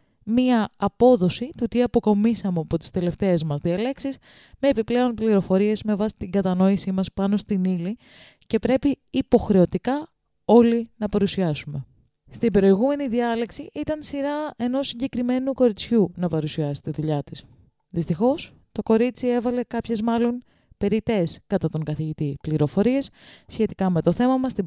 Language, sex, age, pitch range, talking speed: Greek, female, 20-39, 185-250 Hz, 140 wpm